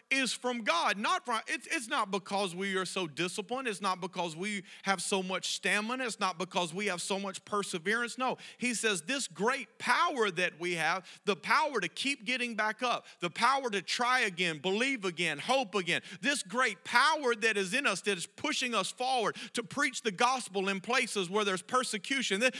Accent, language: American, English